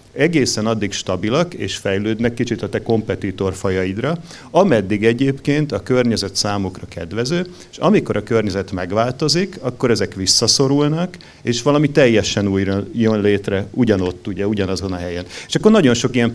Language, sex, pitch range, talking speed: Hungarian, male, 100-130 Hz, 145 wpm